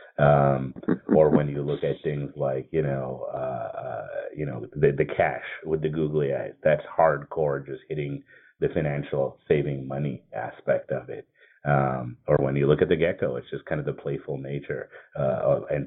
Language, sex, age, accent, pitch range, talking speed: English, male, 30-49, American, 70-75 Hz, 185 wpm